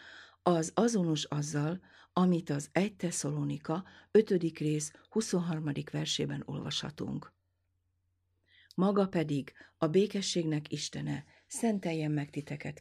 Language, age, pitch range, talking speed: Hungarian, 50-69, 140-180 Hz, 95 wpm